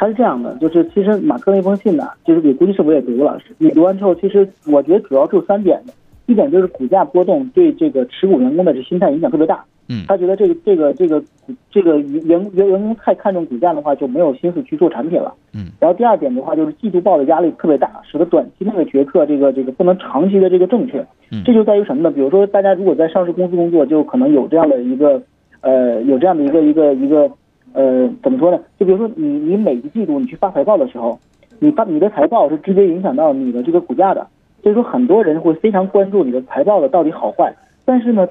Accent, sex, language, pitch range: native, male, Chinese, 170-260 Hz